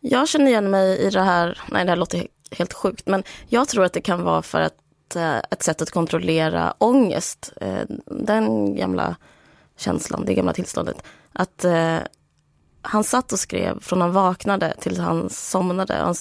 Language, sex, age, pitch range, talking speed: Swedish, female, 20-39, 150-190 Hz, 165 wpm